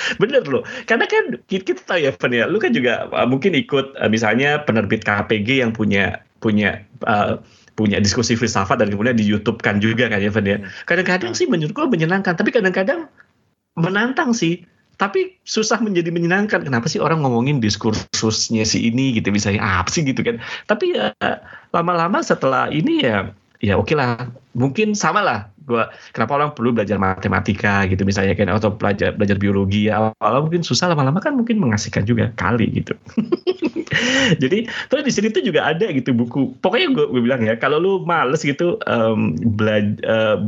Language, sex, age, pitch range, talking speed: Indonesian, male, 20-39, 110-180 Hz, 170 wpm